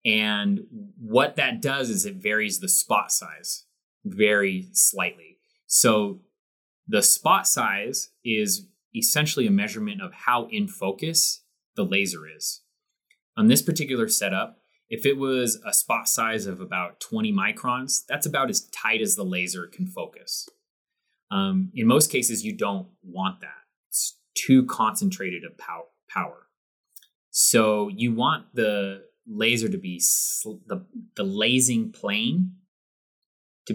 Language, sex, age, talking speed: English, male, 30-49, 135 wpm